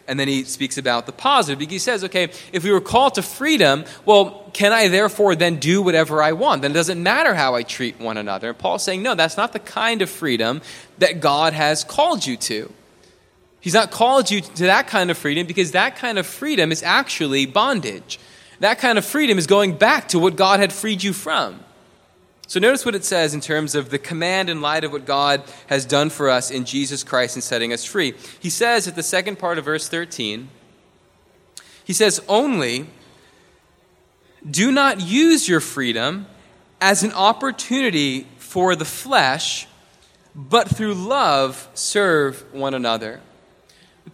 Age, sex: 20-39, male